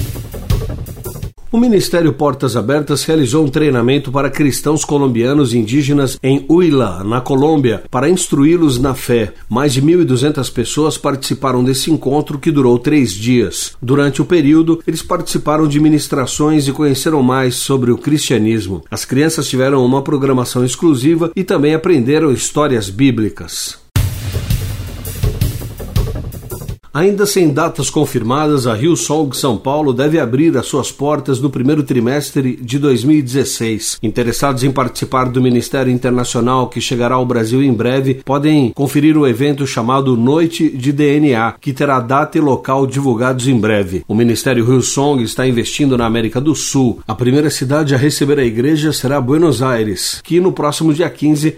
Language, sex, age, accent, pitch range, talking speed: Portuguese, male, 60-79, Brazilian, 120-150 Hz, 145 wpm